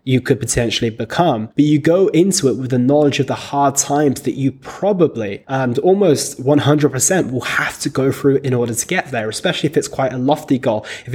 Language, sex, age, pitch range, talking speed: English, male, 20-39, 120-155 Hz, 215 wpm